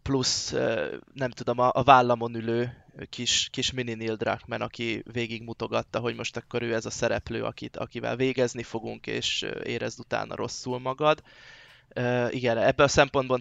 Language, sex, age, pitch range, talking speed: Hungarian, male, 20-39, 115-130 Hz, 150 wpm